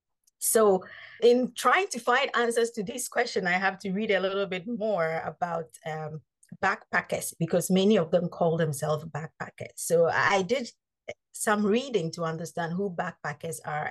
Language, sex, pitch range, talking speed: English, female, 165-215 Hz, 160 wpm